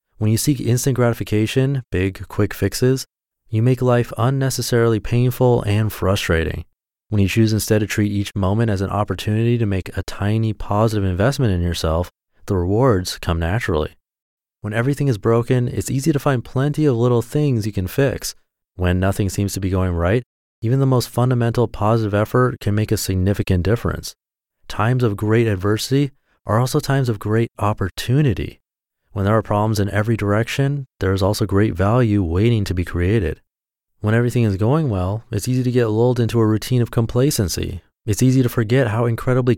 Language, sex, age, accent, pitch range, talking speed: English, male, 30-49, American, 95-120 Hz, 180 wpm